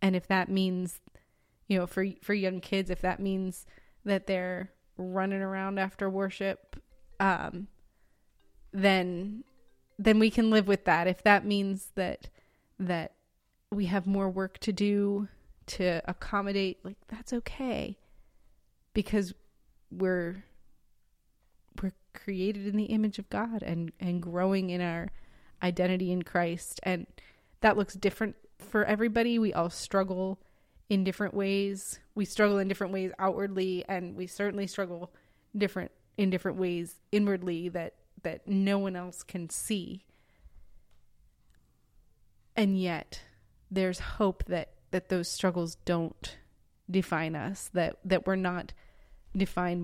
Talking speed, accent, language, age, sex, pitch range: 130 wpm, American, English, 20-39, female, 175-200 Hz